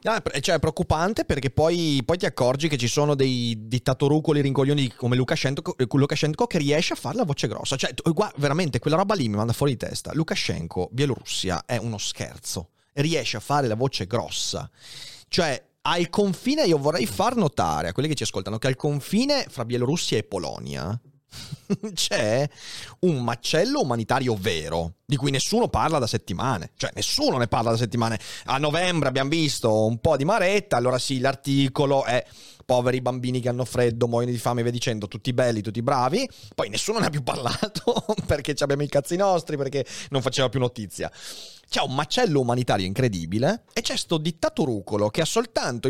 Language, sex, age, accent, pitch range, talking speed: Italian, male, 30-49, native, 120-155 Hz, 175 wpm